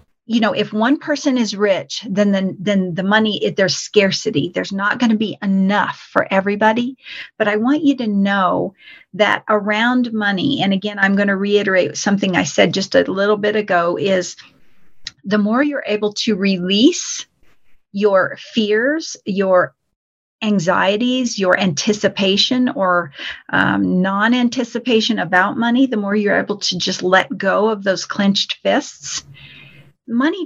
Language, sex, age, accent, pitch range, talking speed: English, female, 40-59, American, 190-230 Hz, 155 wpm